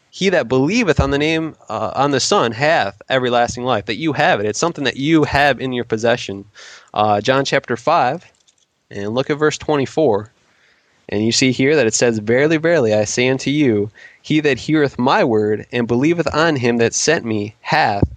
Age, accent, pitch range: 20-39, American, 115-145 Hz